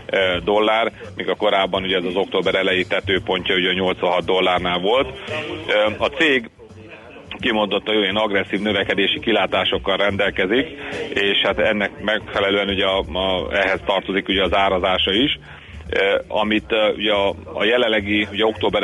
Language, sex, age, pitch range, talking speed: Hungarian, male, 30-49, 100-110 Hz, 135 wpm